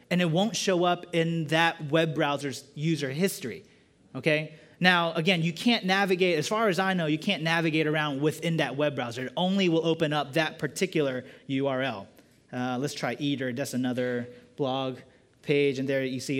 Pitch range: 145-190 Hz